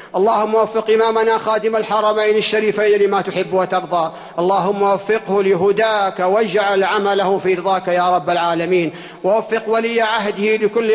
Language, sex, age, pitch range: Arabic, male, 50-69, 175-205 Hz